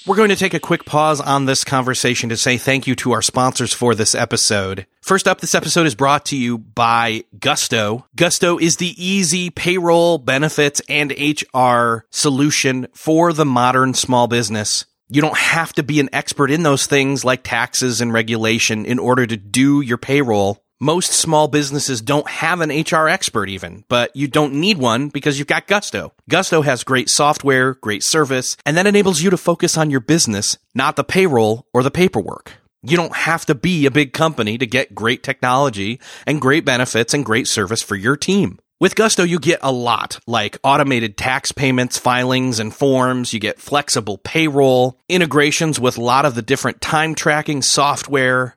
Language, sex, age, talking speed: English, male, 30-49, 185 wpm